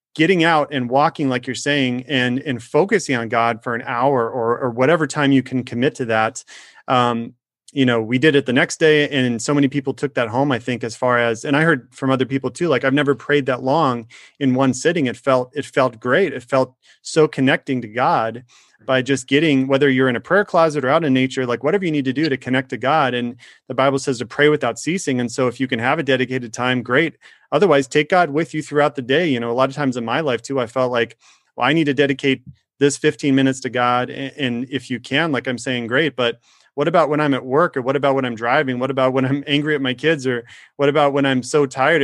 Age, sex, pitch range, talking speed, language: 30-49, male, 125-145 Hz, 260 wpm, English